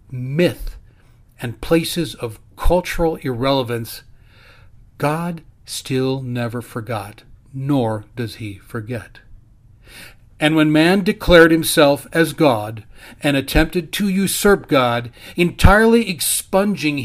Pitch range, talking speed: 115-160 Hz, 100 wpm